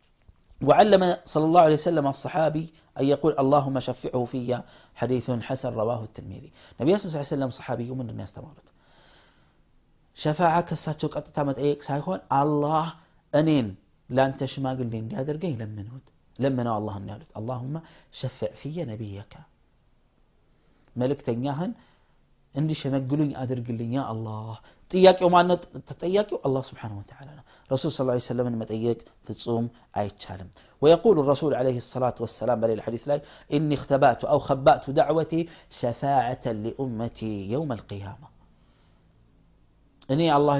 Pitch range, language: 125-155 Hz, Amharic